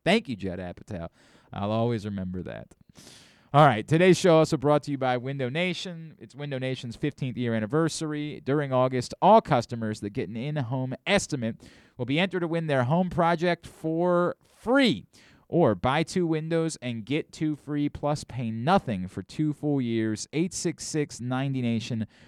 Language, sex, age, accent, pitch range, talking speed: English, male, 30-49, American, 110-155 Hz, 165 wpm